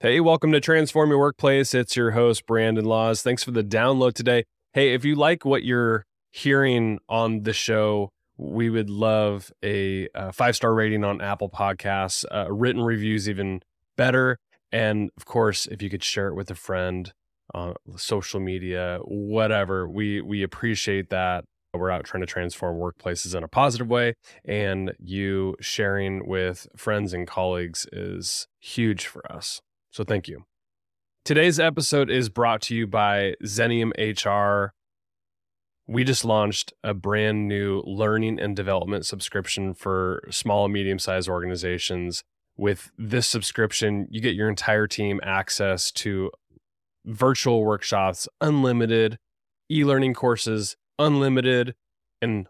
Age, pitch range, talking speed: 20-39, 95-115 Hz, 145 wpm